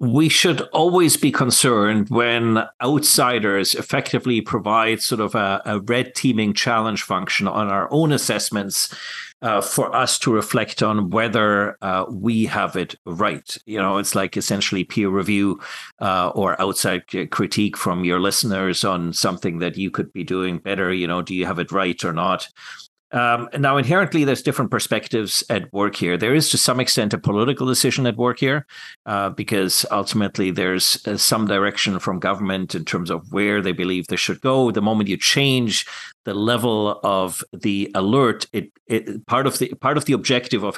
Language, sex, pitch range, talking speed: English, male, 100-130 Hz, 180 wpm